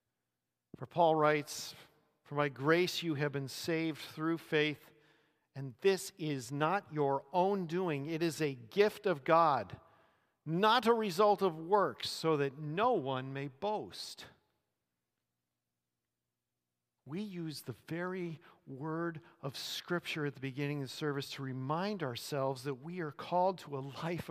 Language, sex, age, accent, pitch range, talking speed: English, male, 50-69, American, 135-200 Hz, 145 wpm